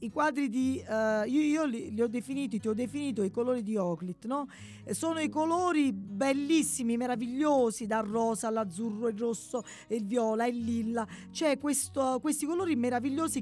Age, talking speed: 40-59, 155 wpm